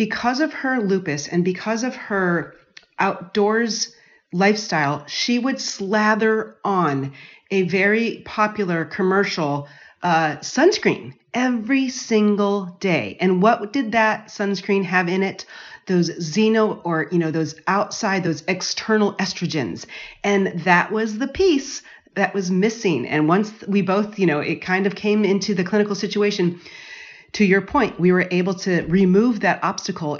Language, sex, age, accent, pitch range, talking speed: English, female, 40-59, American, 170-215 Hz, 145 wpm